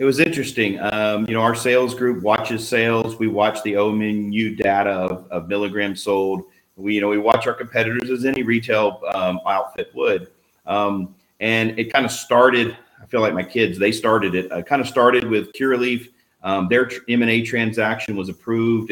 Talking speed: 200 wpm